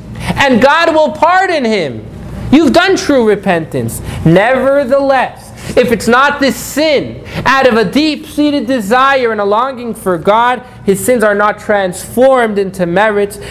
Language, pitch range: English, 200-260 Hz